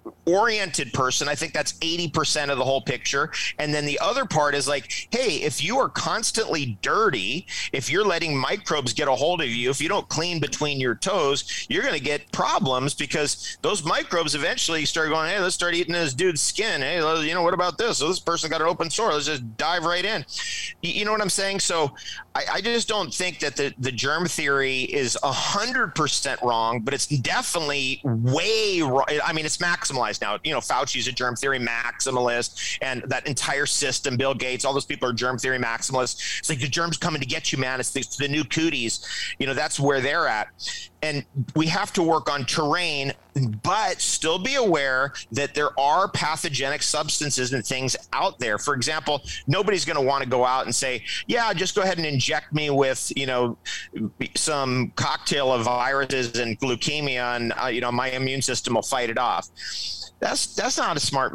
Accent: American